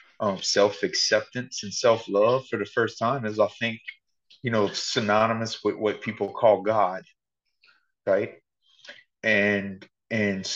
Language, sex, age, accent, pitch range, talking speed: English, male, 30-49, American, 105-125 Hz, 125 wpm